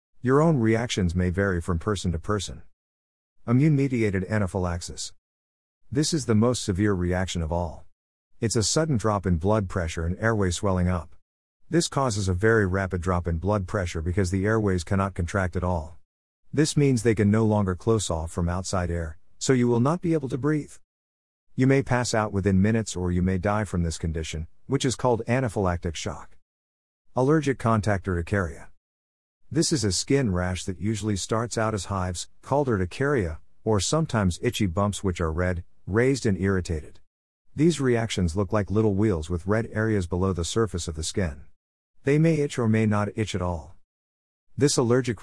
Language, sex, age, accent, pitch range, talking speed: English, male, 50-69, American, 85-115 Hz, 180 wpm